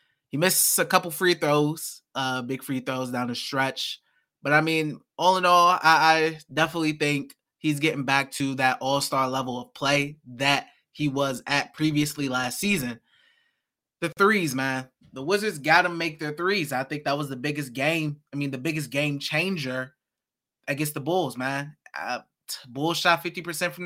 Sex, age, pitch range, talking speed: male, 20-39, 140-195 Hz, 180 wpm